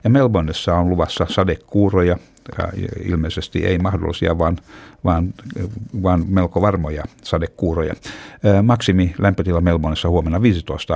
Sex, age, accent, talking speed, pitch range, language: male, 60-79, native, 100 wpm, 85-105 Hz, Finnish